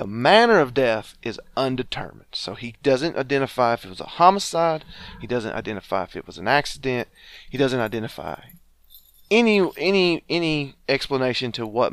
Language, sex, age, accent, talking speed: English, male, 30-49, American, 160 wpm